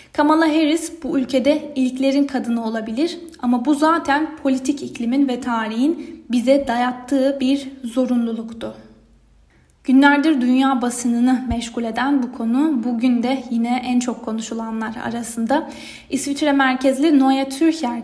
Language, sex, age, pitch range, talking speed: Turkish, female, 10-29, 235-295 Hz, 120 wpm